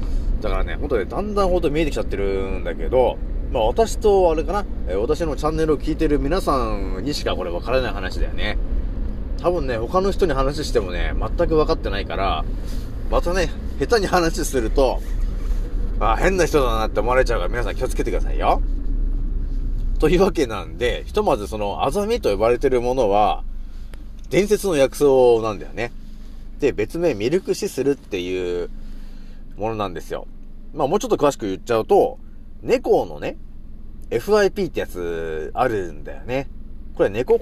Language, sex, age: Japanese, male, 30-49